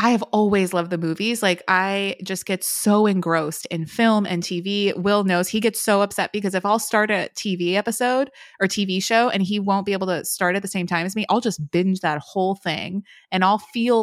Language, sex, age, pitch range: English, female, 20-39, 175-205 Hz